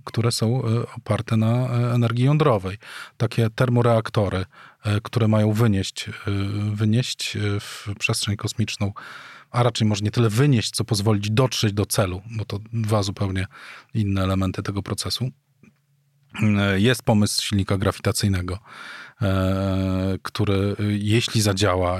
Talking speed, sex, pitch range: 110 wpm, male, 100-115 Hz